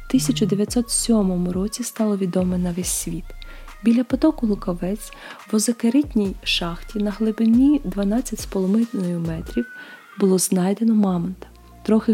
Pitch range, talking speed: 195-235 Hz, 110 wpm